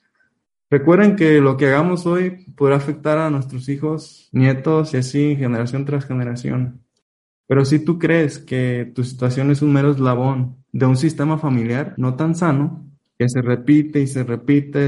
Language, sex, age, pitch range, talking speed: Spanish, male, 20-39, 130-160 Hz, 165 wpm